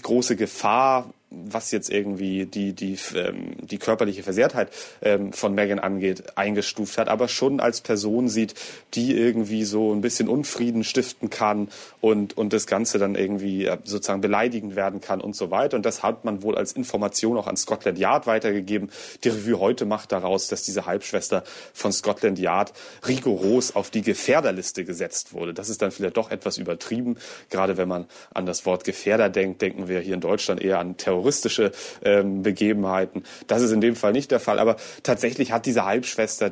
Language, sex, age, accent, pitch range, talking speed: German, male, 30-49, German, 95-115 Hz, 185 wpm